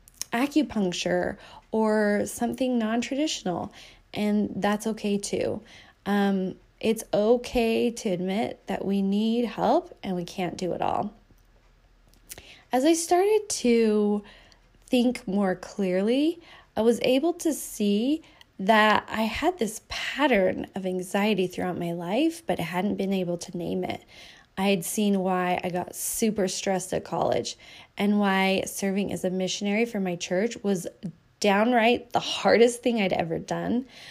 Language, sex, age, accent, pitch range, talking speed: English, female, 20-39, American, 190-240 Hz, 140 wpm